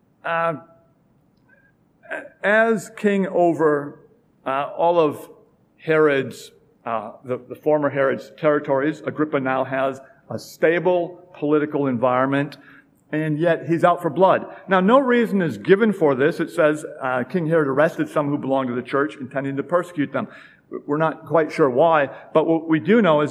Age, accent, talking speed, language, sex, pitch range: 50-69, American, 155 wpm, English, male, 140-175 Hz